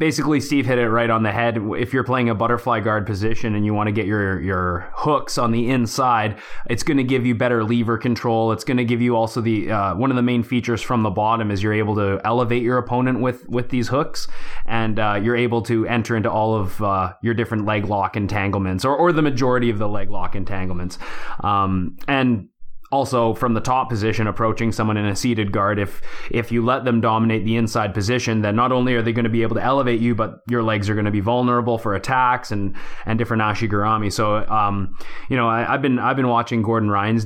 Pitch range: 105-125 Hz